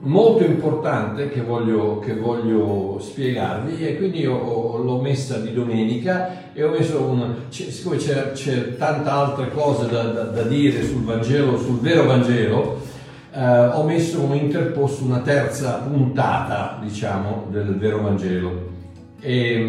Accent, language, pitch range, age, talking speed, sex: native, Italian, 105-140 Hz, 50-69, 145 wpm, male